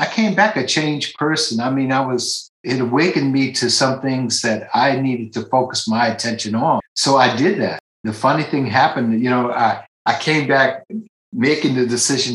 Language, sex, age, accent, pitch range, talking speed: English, male, 60-79, American, 105-125 Hz, 200 wpm